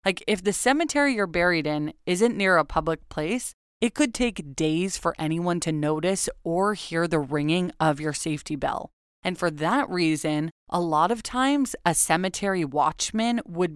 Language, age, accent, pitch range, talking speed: English, 20-39, American, 155-195 Hz, 175 wpm